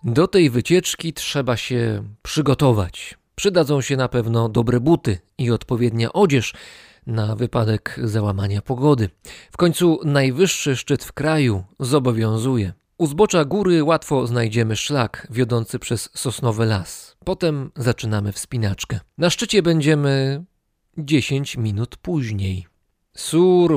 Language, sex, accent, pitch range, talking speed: Polish, male, native, 115-160 Hz, 115 wpm